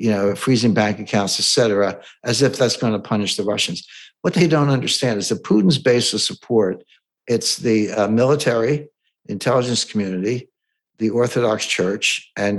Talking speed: 160 wpm